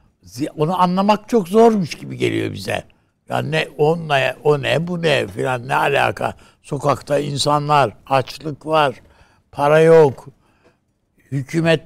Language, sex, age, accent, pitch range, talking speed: Turkish, male, 60-79, native, 130-195 Hz, 120 wpm